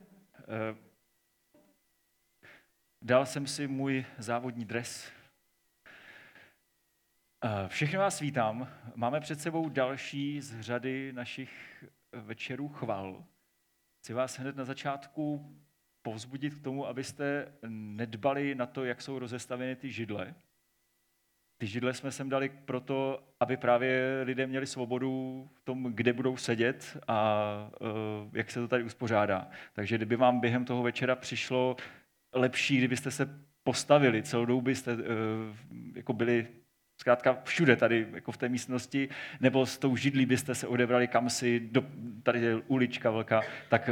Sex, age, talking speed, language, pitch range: male, 30-49, 130 wpm, Czech, 115-135 Hz